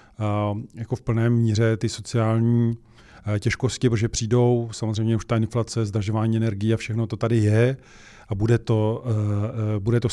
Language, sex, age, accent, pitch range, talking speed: Czech, male, 40-59, native, 110-120 Hz, 155 wpm